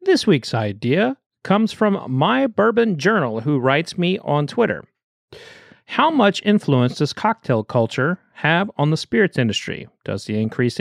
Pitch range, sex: 115-155 Hz, male